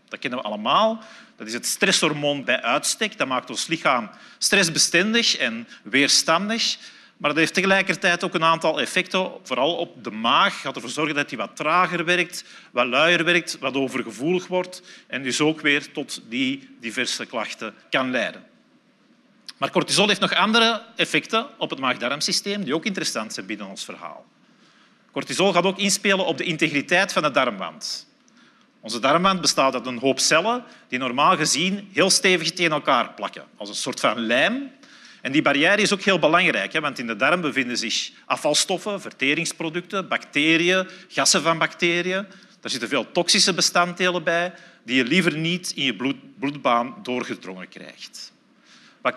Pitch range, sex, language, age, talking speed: 160-210 Hz, male, Dutch, 40-59, 165 wpm